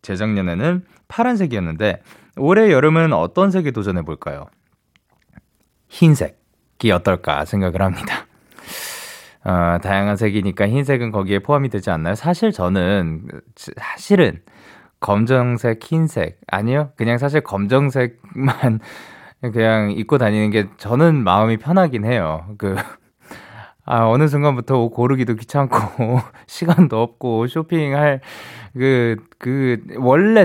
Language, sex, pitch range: Korean, male, 110-185 Hz